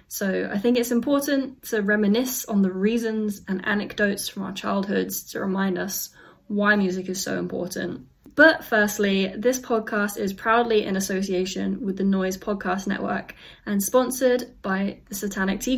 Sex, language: female, English